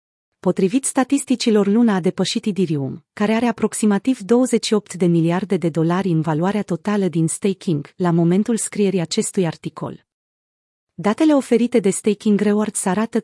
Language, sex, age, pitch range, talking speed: Romanian, female, 30-49, 175-220 Hz, 135 wpm